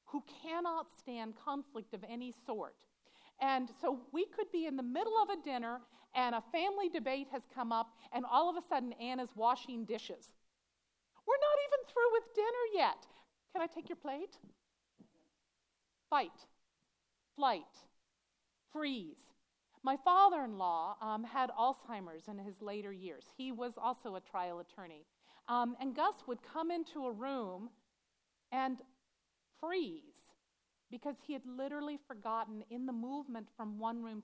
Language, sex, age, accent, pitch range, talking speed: English, female, 50-69, American, 225-295 Hz, 145 wpm